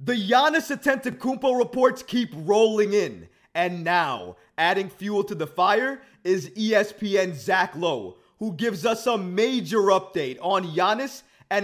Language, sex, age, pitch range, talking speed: English, male, 20-39, 175-225 Hz, 140 wpm